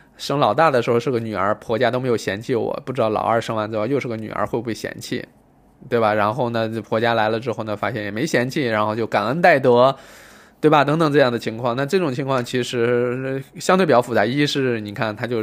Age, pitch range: 20-39, 110-145 Hz